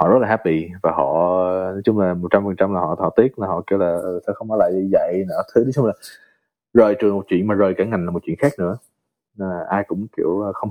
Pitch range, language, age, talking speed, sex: 90-110 Hz, Vietnamese, 20-39, 265 wpm, male